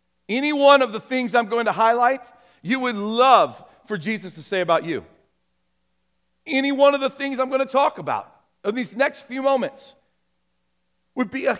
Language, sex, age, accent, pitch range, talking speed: English, male, 50-69, American, 185-260 Hz, 185 wpm